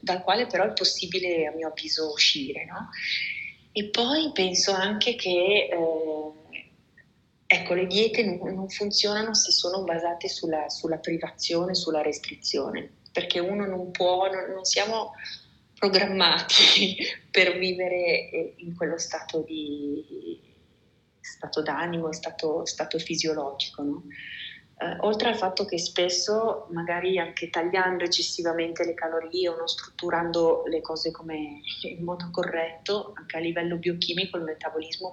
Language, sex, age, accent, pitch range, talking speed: Italian, female, 30-49, native, 160-185 Hz, 130 wpm